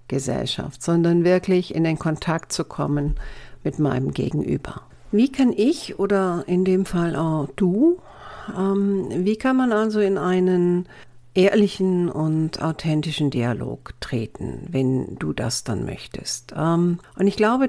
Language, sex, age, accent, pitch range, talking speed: German, female, 50-69, German, 155-195 Hz, 130 wpm